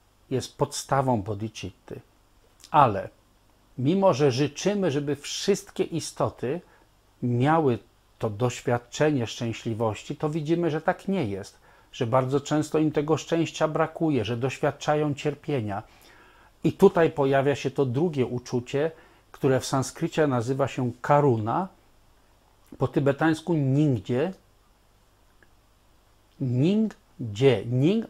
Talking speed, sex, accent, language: 100 wpm, male, native, Polish